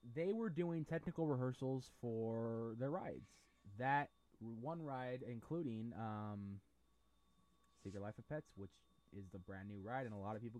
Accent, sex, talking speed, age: American, male, 160 wpm, 20-39